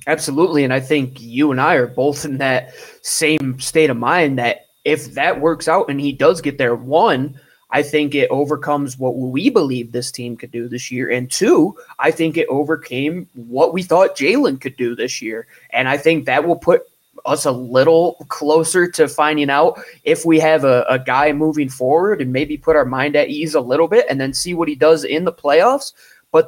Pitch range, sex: 130-180 Hz, male